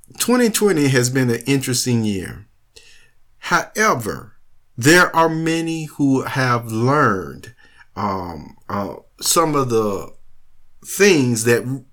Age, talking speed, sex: 50-69, 100 wpm, male